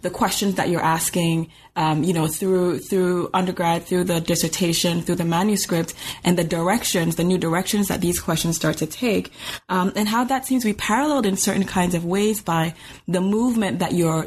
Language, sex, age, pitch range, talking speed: English, female, 20-39, 170-220 Hz, 200 wpm